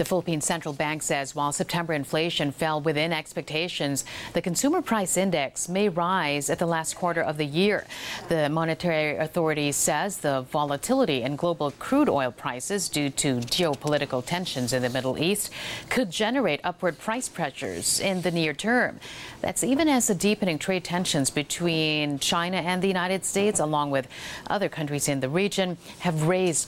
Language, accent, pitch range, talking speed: English, American, 150-190 Hz, 165 wpm